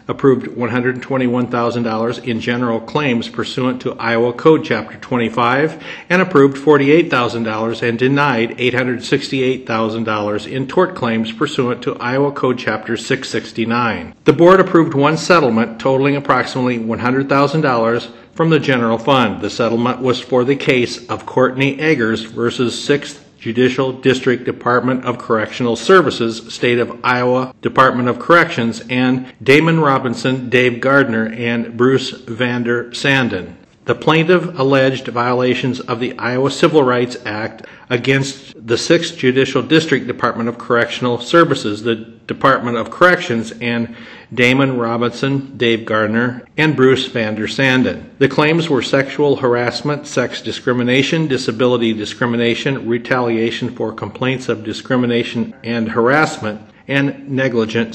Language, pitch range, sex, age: English, 115-135 Hz, male, 50-69